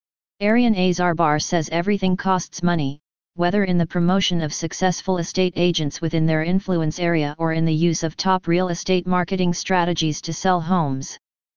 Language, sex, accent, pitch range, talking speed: English, female, American, 165-190 Hz, 160 wpm